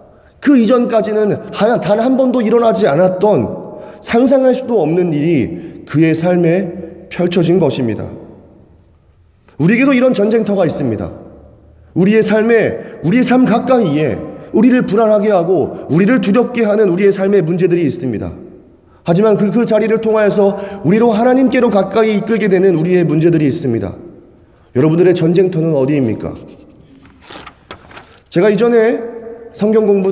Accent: native